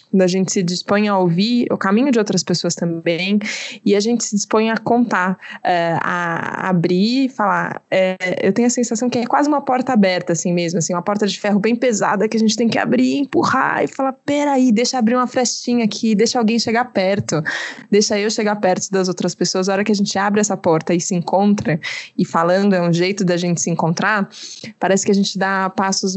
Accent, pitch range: Brazilian, 185-220 Hz